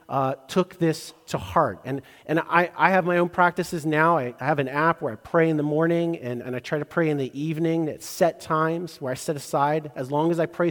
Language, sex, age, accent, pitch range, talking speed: English, male, 40-59, American, 130-165 Hz, 260 wpm